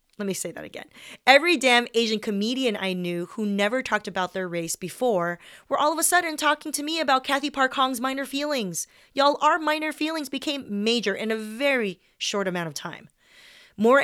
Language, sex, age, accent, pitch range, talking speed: English, female, 30-49, American, 185-265 Hz, 195 wpm